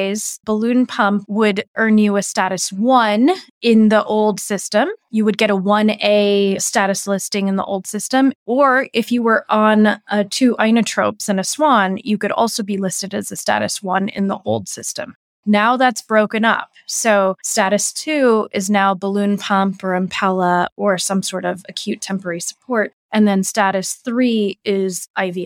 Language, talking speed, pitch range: English, 170 wpm, 195-235 Hz